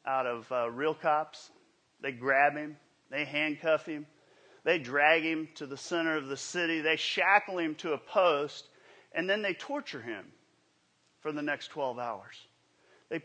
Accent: American